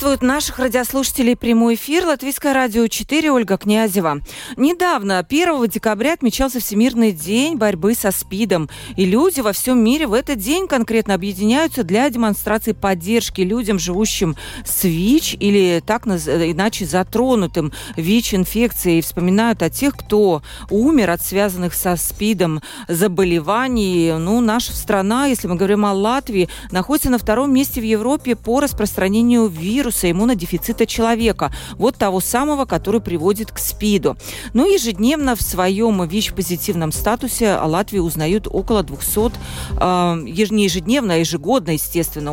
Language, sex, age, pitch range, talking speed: Russian, female, 40-59, 180-235 Hz, 135 wpm